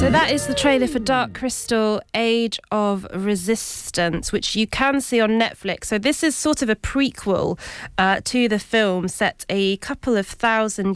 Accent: British